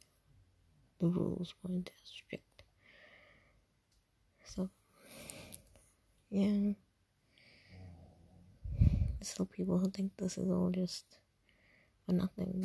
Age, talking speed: 20-39, 80 wpm